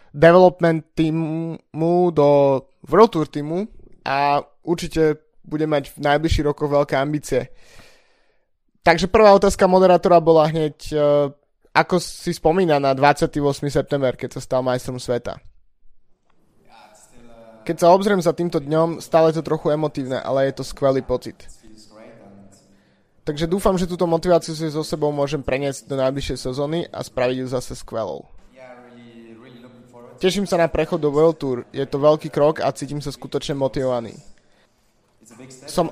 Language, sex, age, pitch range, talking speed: Slovak, male, 20-39, 125-160 Hz, 135 wpm